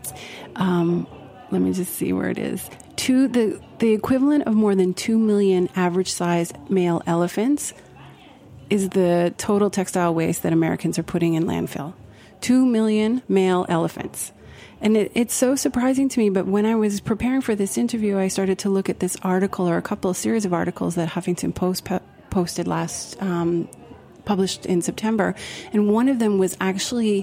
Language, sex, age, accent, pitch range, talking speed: English, female, 30-49, American, 175-220 Hz, 175 wpm